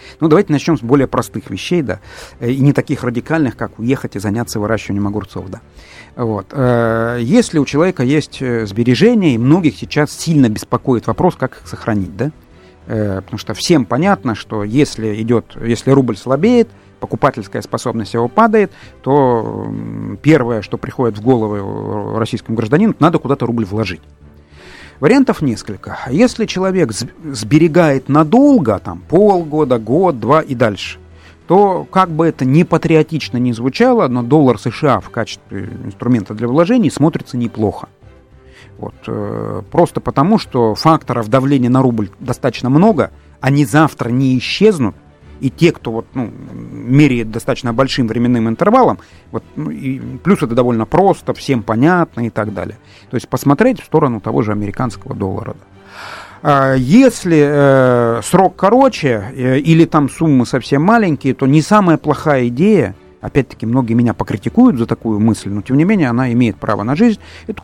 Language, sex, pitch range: Russian, male, 110-155 Hz